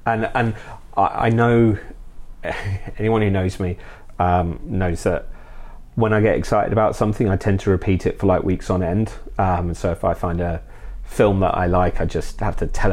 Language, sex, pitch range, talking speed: English, male, 90-105 Hz, 195 wpm